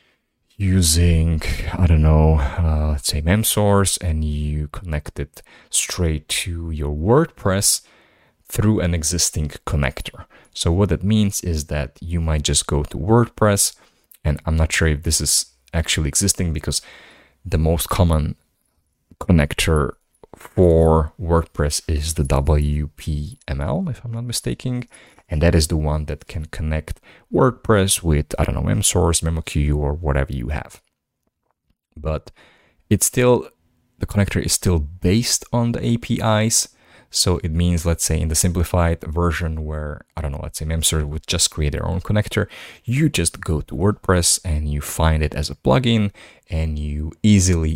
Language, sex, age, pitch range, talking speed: English, male, 30-49, 75-100 Hz, 155 wpm